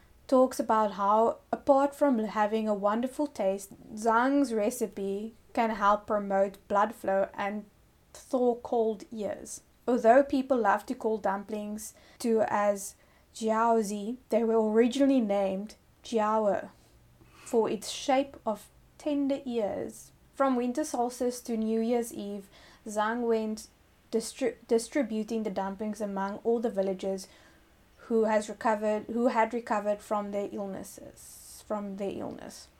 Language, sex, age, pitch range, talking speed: English, female, 20-39, 210-235 Hz, 125 wpm